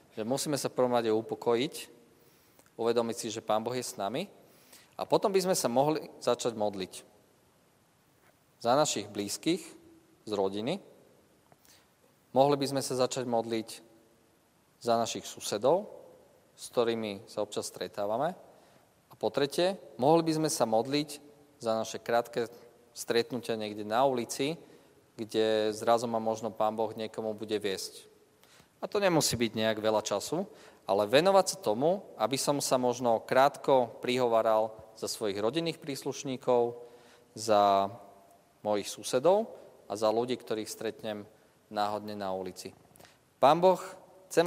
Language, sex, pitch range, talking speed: Slovak, male, 110-135 Hz, 135 wpm